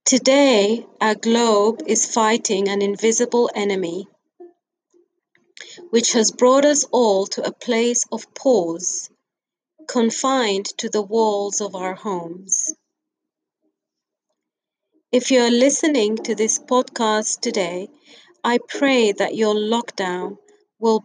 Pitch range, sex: 215-305 Hz, female